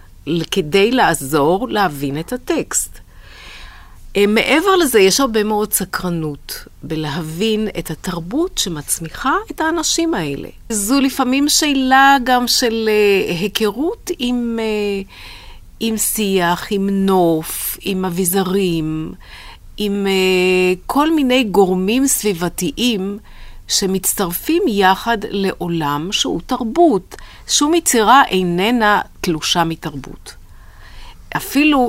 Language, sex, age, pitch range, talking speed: Hebrew, female, 40-59, 165-250 Hz, 90 wpm